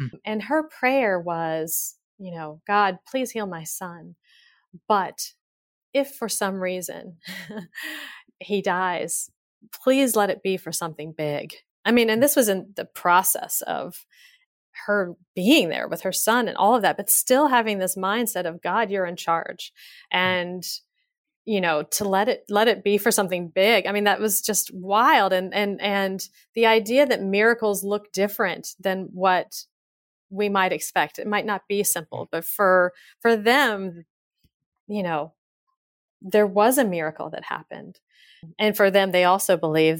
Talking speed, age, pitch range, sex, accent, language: 165 wpm, 30-49, 175-230 Hz, female, American, English